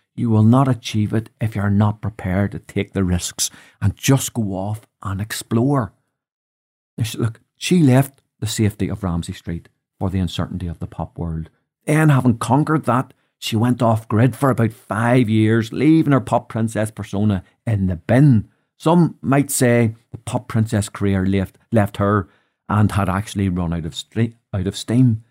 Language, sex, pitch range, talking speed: English, male, 100-130 Hz, 180 wpm